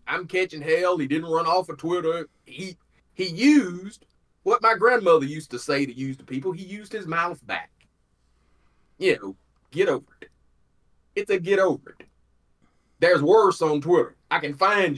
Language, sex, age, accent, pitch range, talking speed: English, male, 30-49, American, 140-200 Hz, 175 wpm